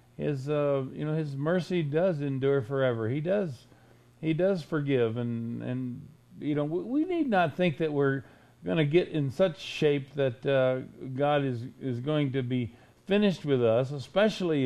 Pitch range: 125-160 Hz